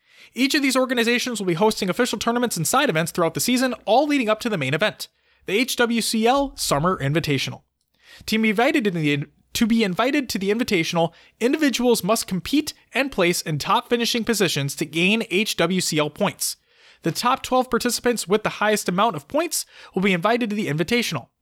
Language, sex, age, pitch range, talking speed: English, male, 20-39, 175-245 Hz, 175 wpm